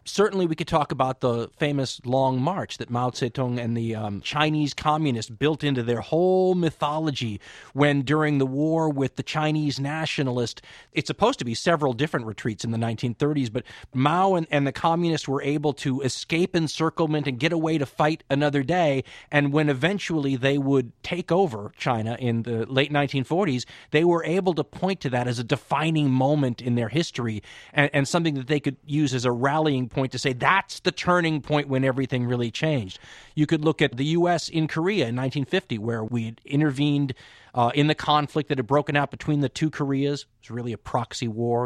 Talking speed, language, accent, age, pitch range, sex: 195 wpm, English, American, 30-49, 125-155 Hz, male